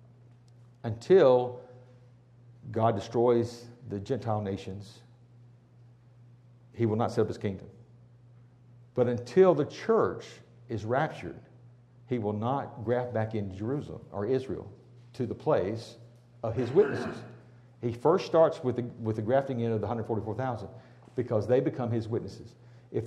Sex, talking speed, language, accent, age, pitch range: male, 140 wpm, English, American, 60-79, 110-125 Hz